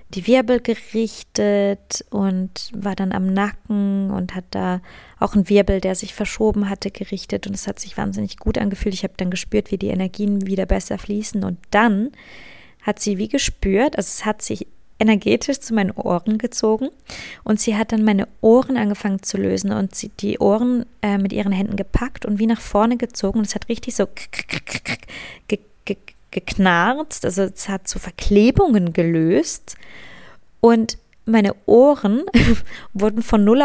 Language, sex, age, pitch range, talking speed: German, female, 20-39, 195-225 Hz, 175 wpm